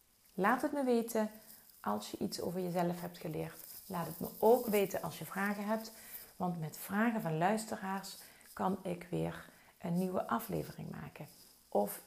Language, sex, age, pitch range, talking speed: Dutch, female, 40-59, 160-210 Hz, 165 wpm